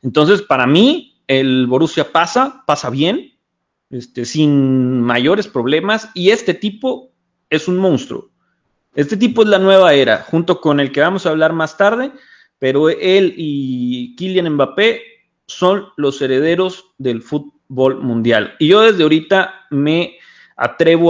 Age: 30-49